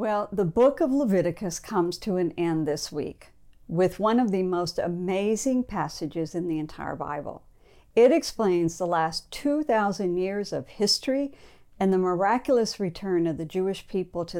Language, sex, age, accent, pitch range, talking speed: English, female, 60-79, American, 170-220 Hz, 165 wpm